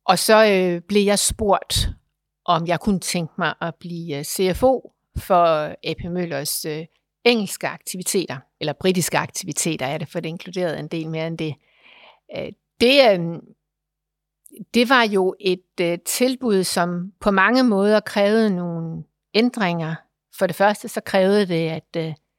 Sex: female